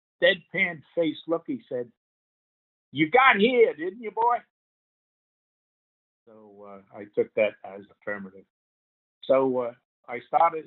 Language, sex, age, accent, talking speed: English, male, 50-69, American, 130 wpm